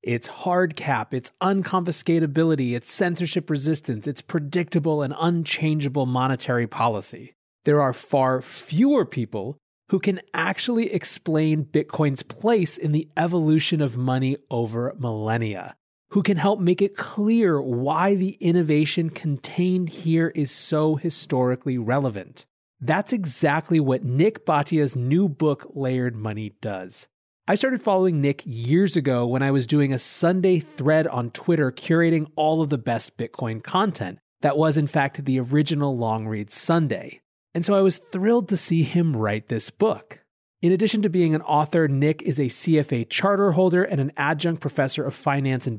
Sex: male